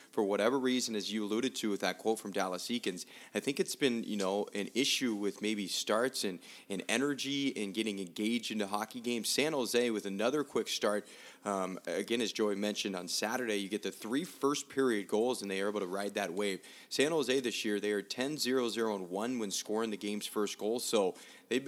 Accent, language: American, English